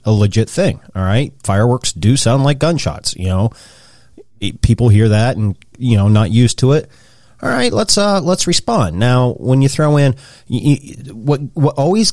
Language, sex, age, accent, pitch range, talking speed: English, male, 30-49, American, 110-140 Hz, 190 wpm